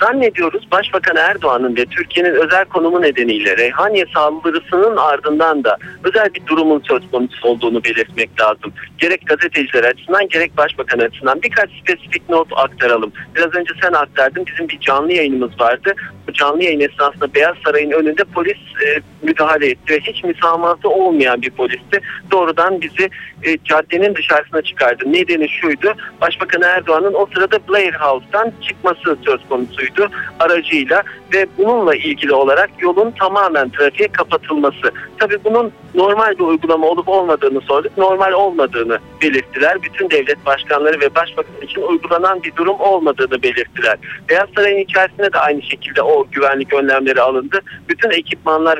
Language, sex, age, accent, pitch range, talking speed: Turkish, male, 50-69, native, 150-200 Hz, 145 wpm